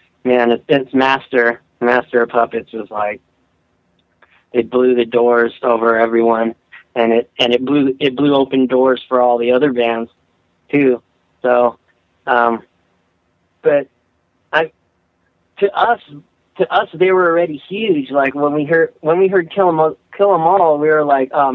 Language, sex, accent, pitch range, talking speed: English, male, American, 120-150 Hz, 155 wpm